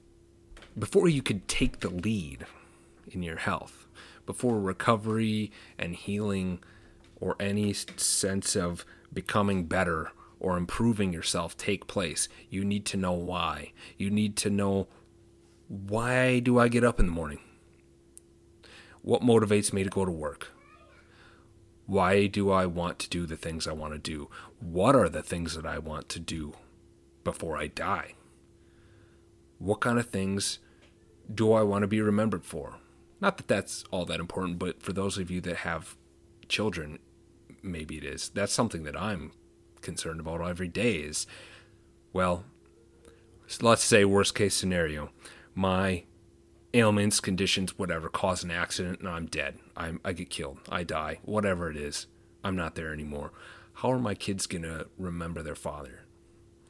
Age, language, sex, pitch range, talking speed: 30-49, English, male, 85-105 Hz, 155 wpm